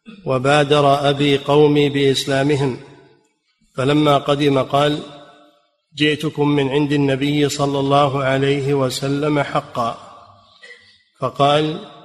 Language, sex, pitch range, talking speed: Arabic, male, 140-150 Hz, 85 wpm